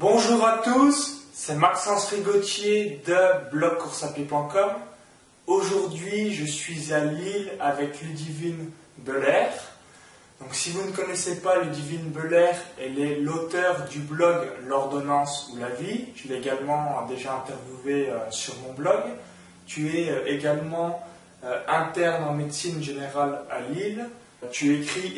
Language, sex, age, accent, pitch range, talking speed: French, male, 20-39, French, 130-175 Hz, 125 wpm